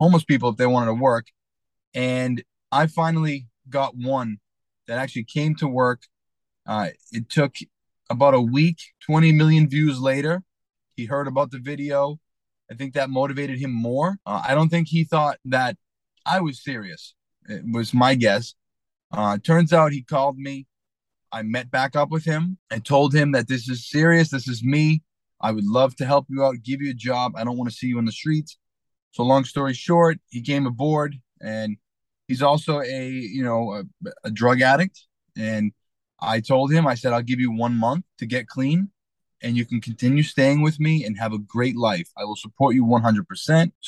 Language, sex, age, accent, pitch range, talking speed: English, male, 20-39, American, 120-155 Hz, 195 wpm